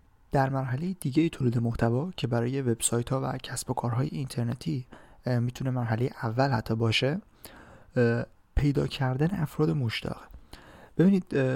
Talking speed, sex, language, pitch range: 125 wpm, male, Persian, 115-140 Hz